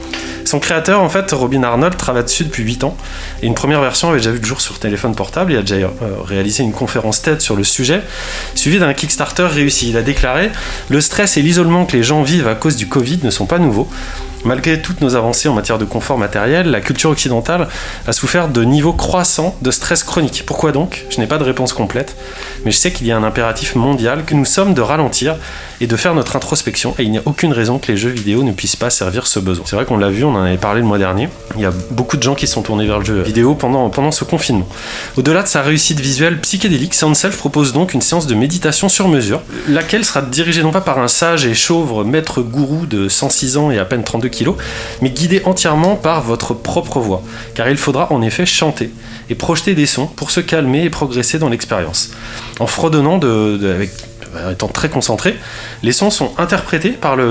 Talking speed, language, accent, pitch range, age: 230 wpm, French, French, 115-155 Hz, 20-39